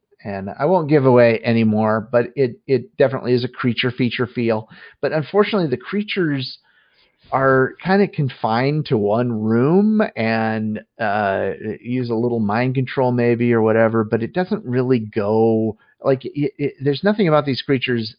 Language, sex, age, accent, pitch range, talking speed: English, male, 40-59, American, 110-140 Hz, 170 wpm